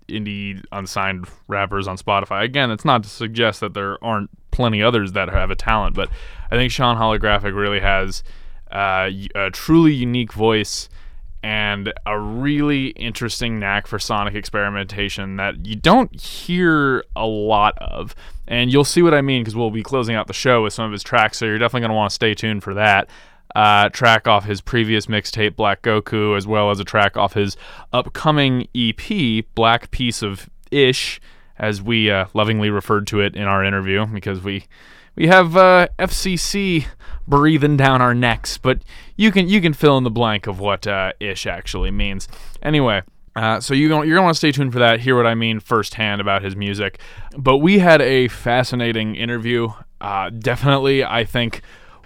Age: 20-39